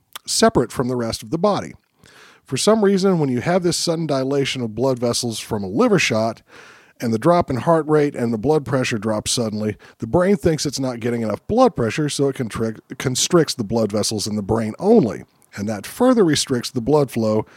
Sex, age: male, 40-59